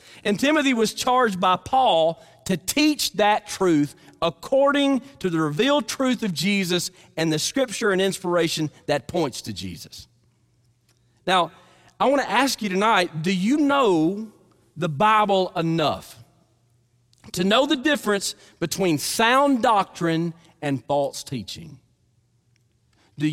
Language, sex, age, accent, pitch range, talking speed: English, male, 40-59, American, 140-215 Hz, 130 wpm